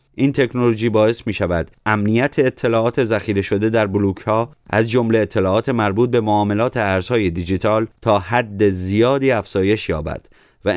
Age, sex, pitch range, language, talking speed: 30-49, male, 95-120 Hz, Persian, 145 wpm